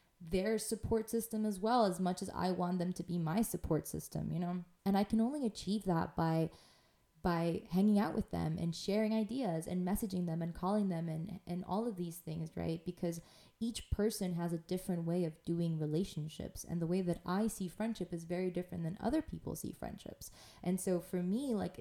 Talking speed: 210 wpm